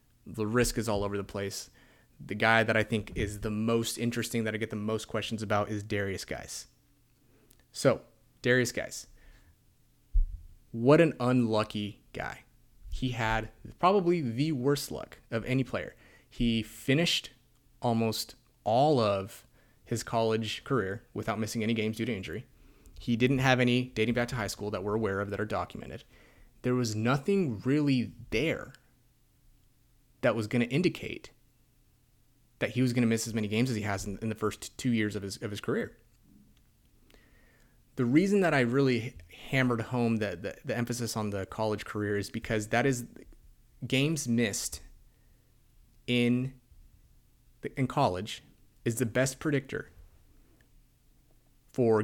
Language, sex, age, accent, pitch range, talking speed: English, male, 30-49, American, 105-125 Hz, 155 wpm